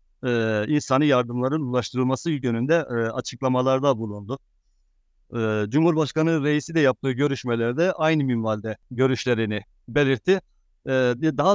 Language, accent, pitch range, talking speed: Turkish, native, 115-150 Hz, 85 wpm